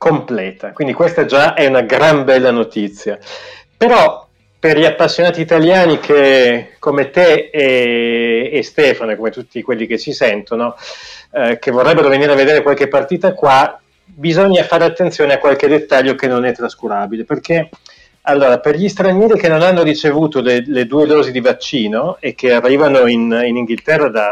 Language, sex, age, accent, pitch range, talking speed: Italian, male, 30-49, native, 120-165 Hz, 170 wpm